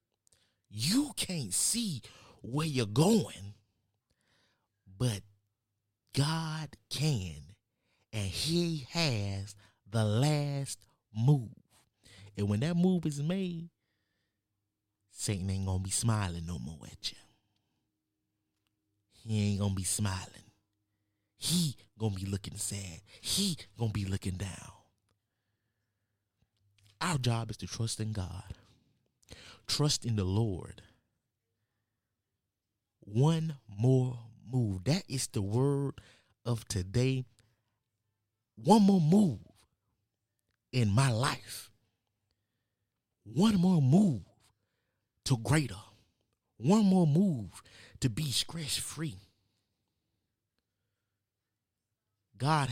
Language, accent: English, American